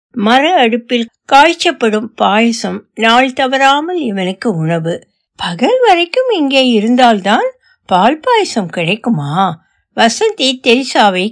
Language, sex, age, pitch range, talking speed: Tamil, female, 60-79, 180-235 Hz, 85 wpm